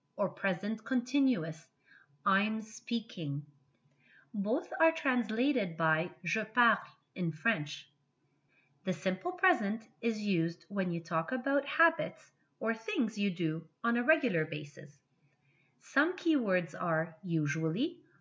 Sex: female